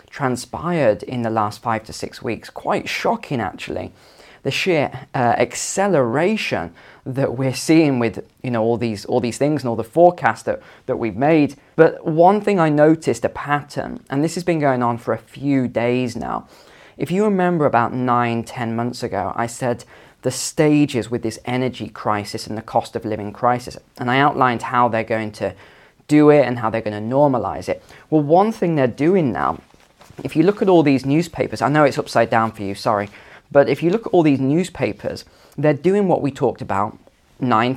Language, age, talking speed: English, 20-39, 200 wpm